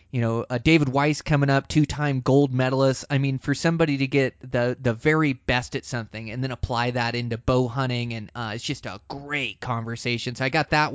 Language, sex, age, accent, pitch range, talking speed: English, male, 20-39, American, 120-145 Hz, 220 wpm